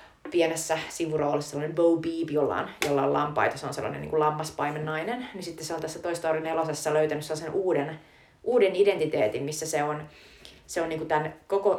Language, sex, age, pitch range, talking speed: Finnish, female, 30-49, 150-185 Hz, 190 wpm